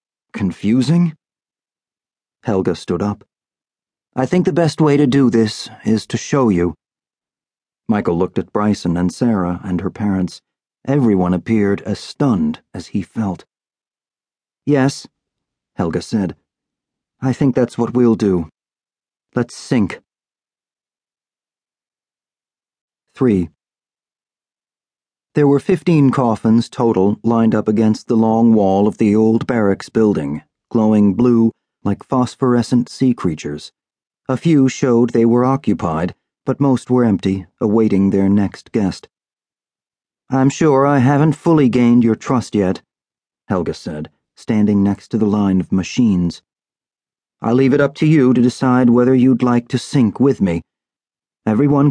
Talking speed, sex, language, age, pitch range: 130 wpm, male, English, 40-59, 100-130 Hz